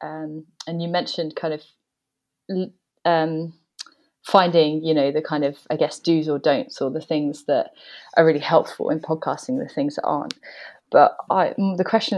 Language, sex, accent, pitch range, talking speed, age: English, female, British, 160-185 Hz, 170 wpm, 20-39